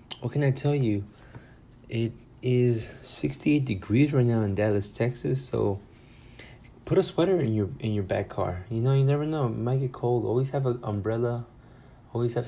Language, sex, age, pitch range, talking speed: English, male, 20-39, 100-120 Hz, 190 wpm